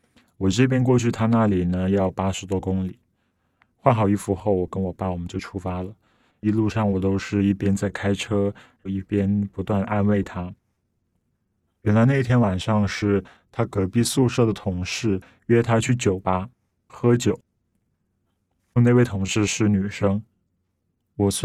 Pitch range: 95-110 Hz